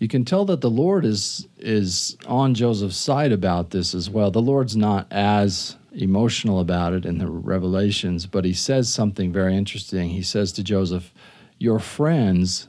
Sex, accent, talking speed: male, American, 175 wpm